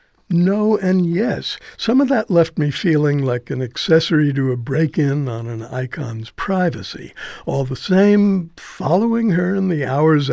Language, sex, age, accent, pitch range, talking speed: English, male, 60-79, American, 135-170 Hz, 155 wpm